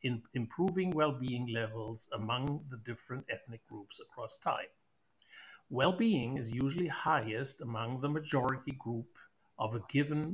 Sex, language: male, Russian